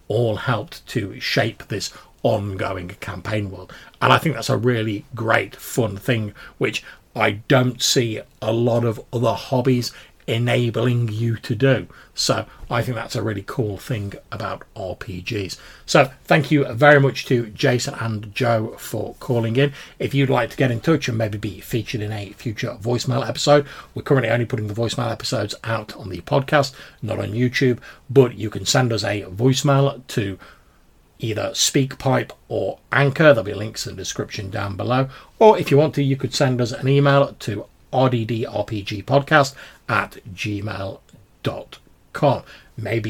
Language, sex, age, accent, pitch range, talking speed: English, male, 40-59, British, 110-135 Hz, 165 wpm